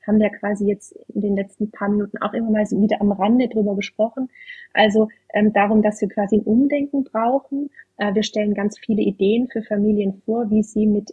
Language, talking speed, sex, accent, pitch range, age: German, 210 wpm, female, German, 200-230 Hz, 30-49